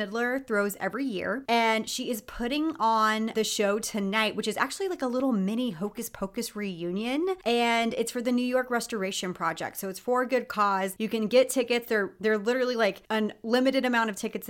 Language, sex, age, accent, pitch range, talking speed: English, female, 30-49, American, 200-245 Hz, 205 wpm